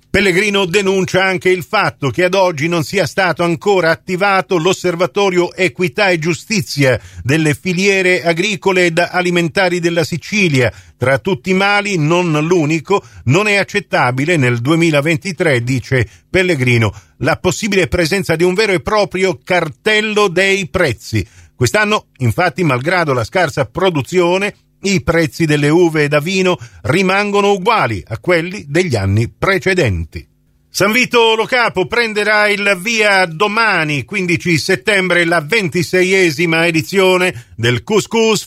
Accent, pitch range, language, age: native, 145-195 Hz, Italian, 50-69